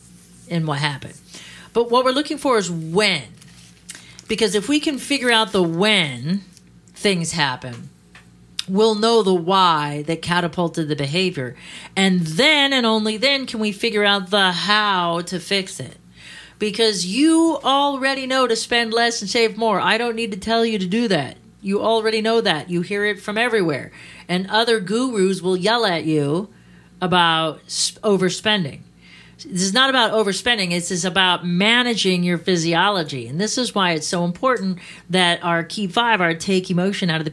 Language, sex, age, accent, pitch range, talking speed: English, female, 40-59, American, 170-225 Hz, 170 wpm